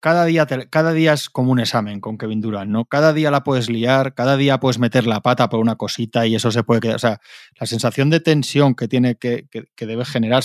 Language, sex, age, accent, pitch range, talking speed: Spanish, male, 20-39, Spanish, 115-130 Hz, 260 wpm